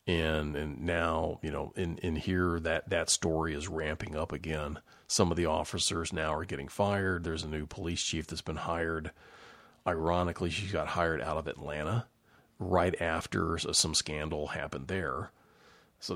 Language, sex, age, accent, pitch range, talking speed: English, male, 40-59, American, 80-100 Hz, 165 wpm